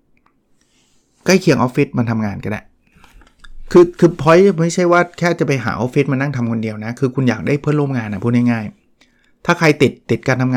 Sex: male